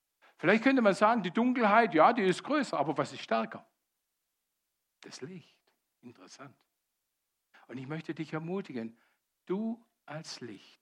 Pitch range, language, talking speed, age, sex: 150-240 Hz, German, 140 wpm, 60-79, male